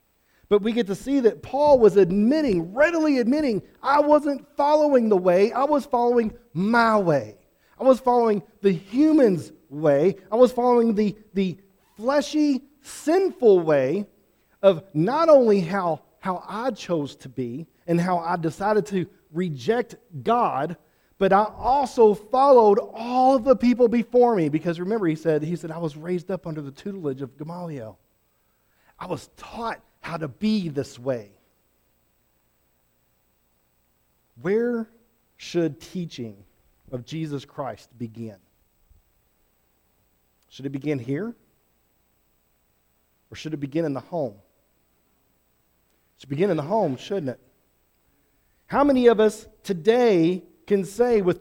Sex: male